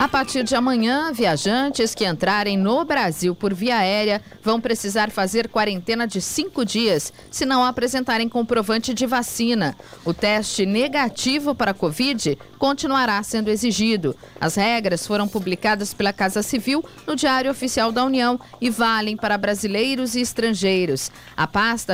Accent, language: Brazilian, Portuguese